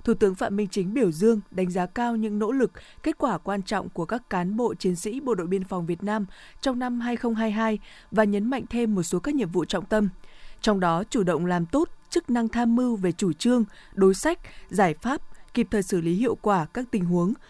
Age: 20-39